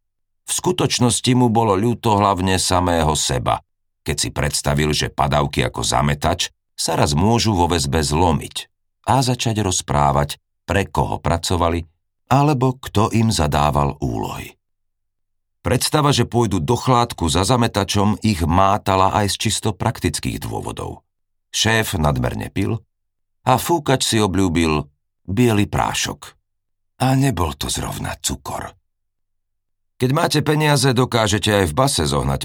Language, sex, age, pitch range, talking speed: Slovak, male, 50-69, 80-110 Hz, 125 wpm